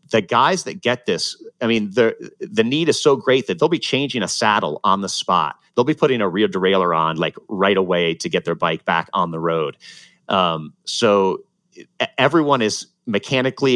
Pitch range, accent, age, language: 90-120 Hz, American, 30-49, English